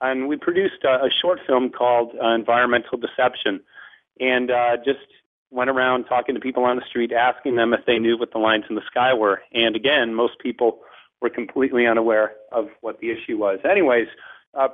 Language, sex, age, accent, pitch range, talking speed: English, male, 40-59, American, 115-130 Hz, 195 wpm